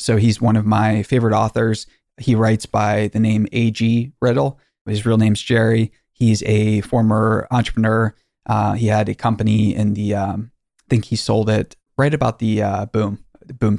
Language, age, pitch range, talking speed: English, 20-39, 105-115 Hz, 180 wpm